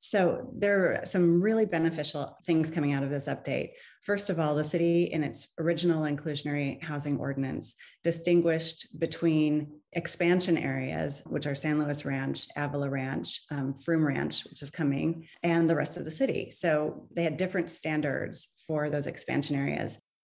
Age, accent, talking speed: 30-49, American, 165 wpm